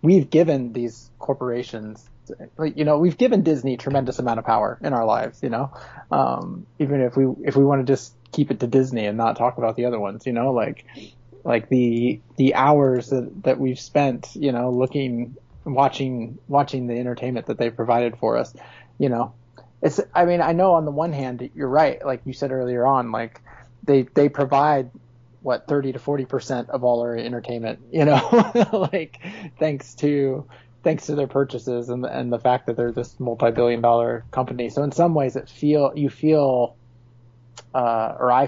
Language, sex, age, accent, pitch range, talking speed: English, male, 30-49, American, 120-140 Hz, 195 wpm